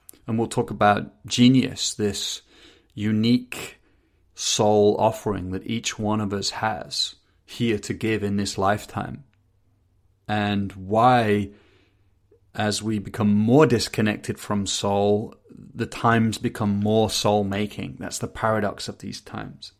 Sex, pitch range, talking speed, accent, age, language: male, 100-115 Hz, 125 wpm, British, 30-49, English